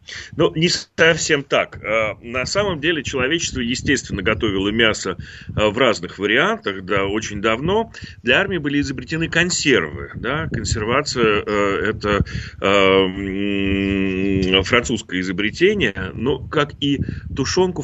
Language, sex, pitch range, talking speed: Russian, male, 100-130 Hz, 120 wpm